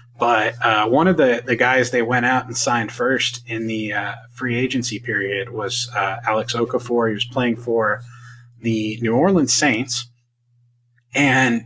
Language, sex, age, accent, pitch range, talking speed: English, male, 20-39, American, 115-130 Hz, 165 wpm